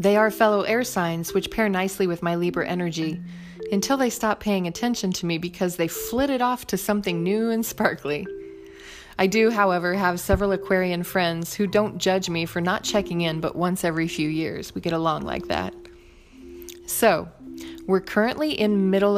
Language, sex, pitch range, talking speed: English, female, 165-210 Hz, 180 wpm